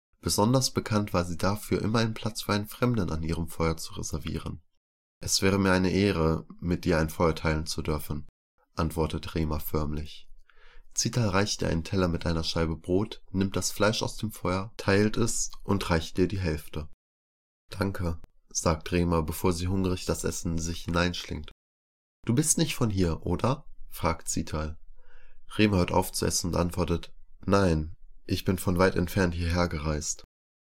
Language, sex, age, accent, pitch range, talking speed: German, male, 20-39, German, 80-105 Hz, 170 wpm